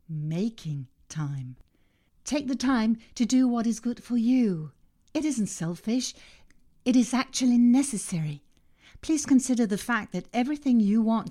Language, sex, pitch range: English, female, 175-230 Hz